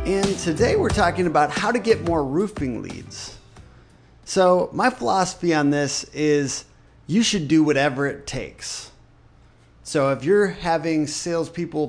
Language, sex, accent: English, male, American